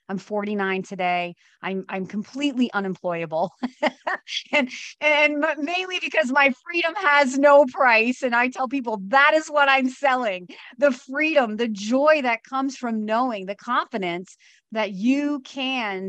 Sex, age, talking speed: female, 30-49, 140 wpm